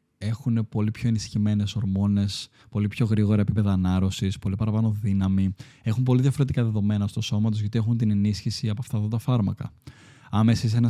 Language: Greek